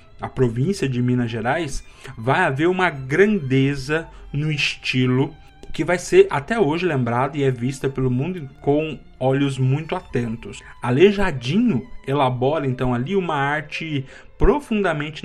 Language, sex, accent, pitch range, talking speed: Portuguese, male, Brazilian, 125-165 Hz, 130 wpm